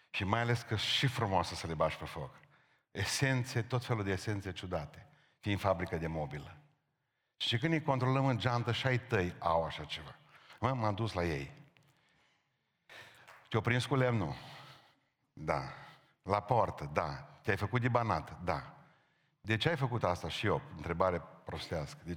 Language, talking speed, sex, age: Romanian, 160 wpm, male, 50-69